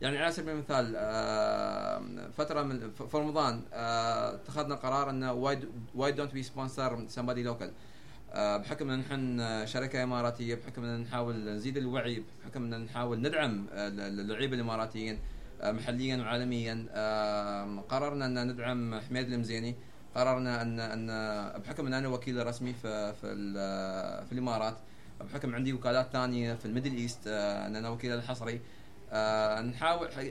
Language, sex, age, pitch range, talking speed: Arabic, male, 30-49, 115-160 Hz, 125 wpm